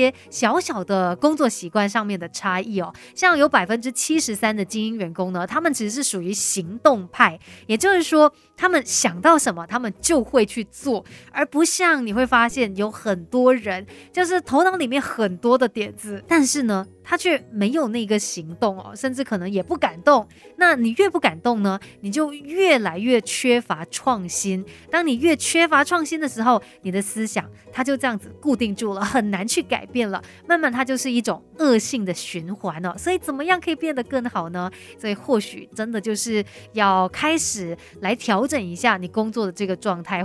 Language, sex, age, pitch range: Chinese, female, 30-49, 195-280 Hz